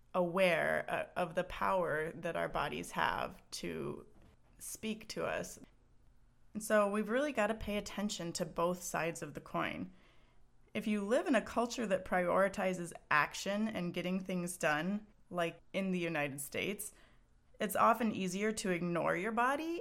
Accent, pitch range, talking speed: American, 170-210 Hz, 155 wpm